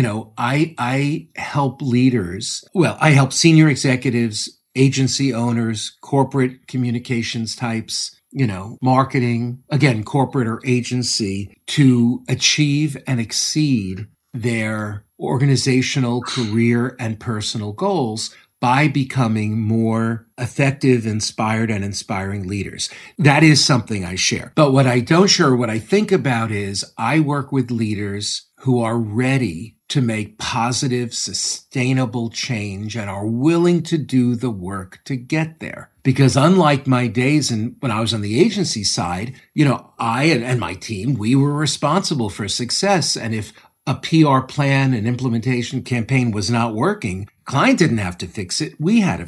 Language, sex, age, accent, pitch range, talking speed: English, male, 40-59, American, 110-140 Hz, 150 wpm